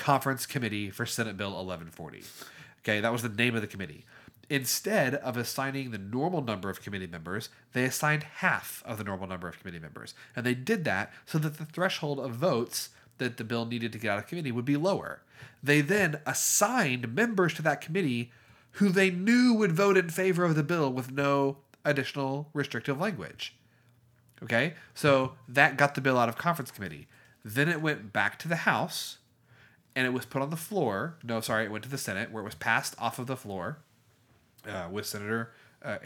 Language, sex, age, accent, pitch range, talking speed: English, male, 30-49, American, 105-135 Hz, 200 wpm